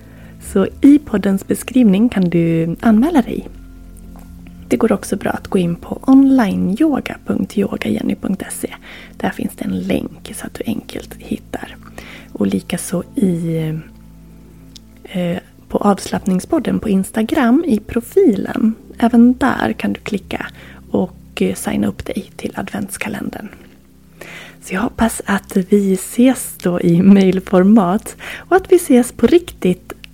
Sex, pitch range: female, 180-235 Hz